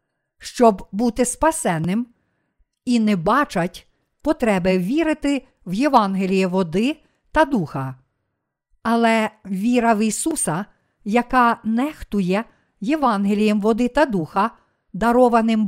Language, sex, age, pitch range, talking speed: Ukrainian, female, 50-69, 195-245 Hz, 90 wpm